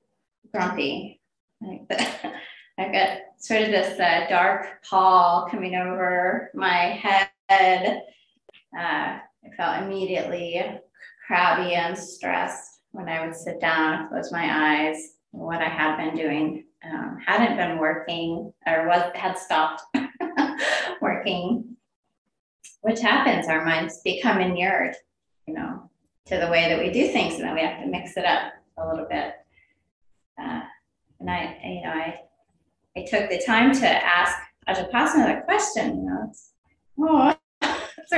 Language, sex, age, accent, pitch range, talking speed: English, female, 20-39, American, 165-260 Hz, 140 wpm